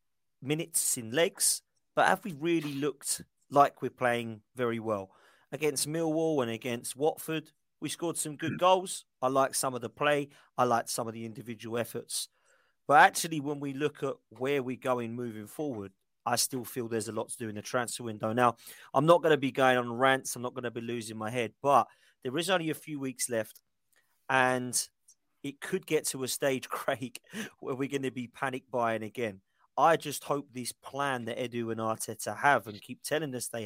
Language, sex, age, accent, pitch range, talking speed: English, male, 40-59, British, 115-145 Hz, 205 wpm